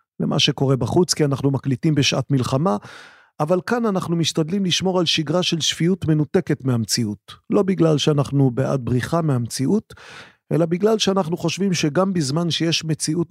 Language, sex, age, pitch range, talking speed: Hebrew, male, 40-59, 135-170 Hz, 150 wpm